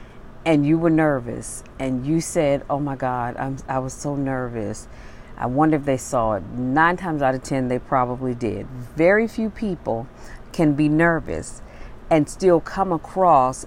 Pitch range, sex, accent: 130-170 Hz, female, American